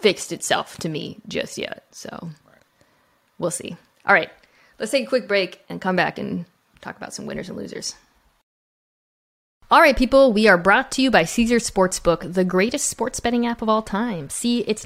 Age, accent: 20-39, American